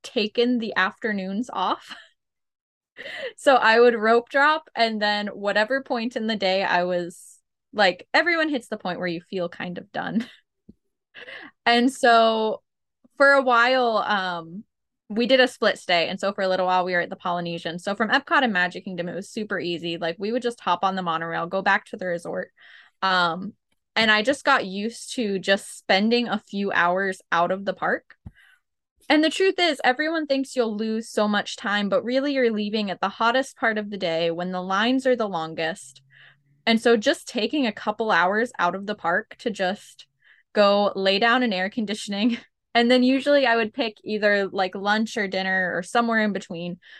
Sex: female